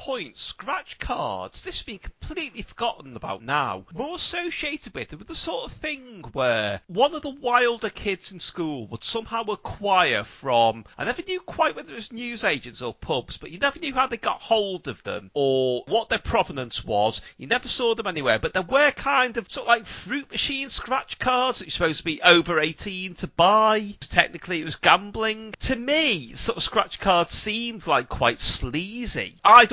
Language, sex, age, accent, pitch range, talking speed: English, male, 30-49, British, 145-235 Hz, 200 wpm